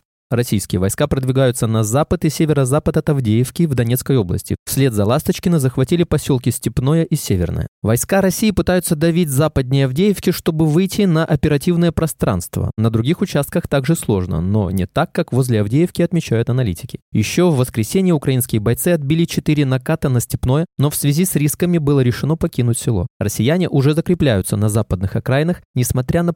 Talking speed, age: 160 wpm, 20-39